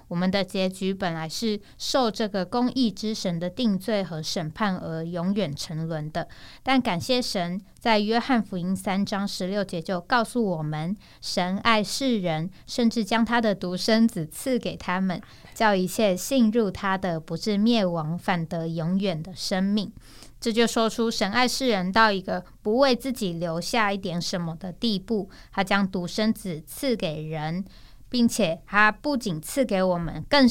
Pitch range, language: 175-225 Hz, Chinese